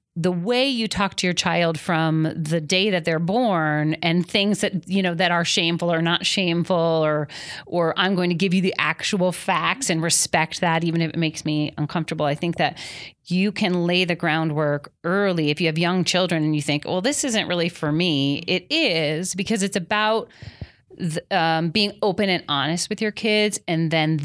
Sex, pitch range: female, 160-195 Hz